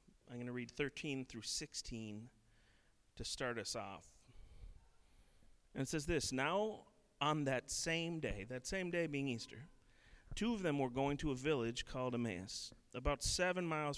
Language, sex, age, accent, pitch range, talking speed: English, male, 40-59, American, 115-160 Hz, 165 wpm